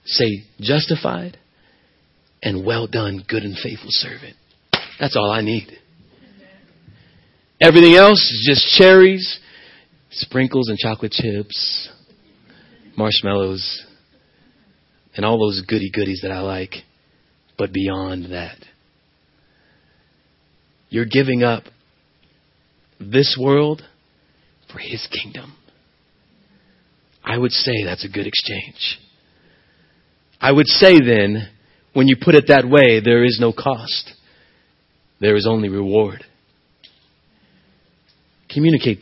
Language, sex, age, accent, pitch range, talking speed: English, male, 40-59, American, 100-135 Hz, 105 wpm